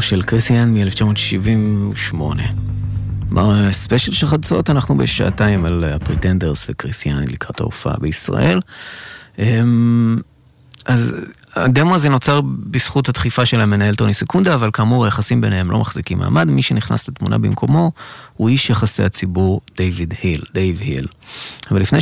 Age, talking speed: 30-49, 125 wpm